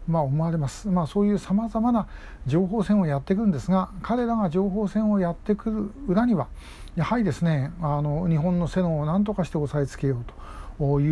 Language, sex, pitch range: Japanese, male, 145-195 Hz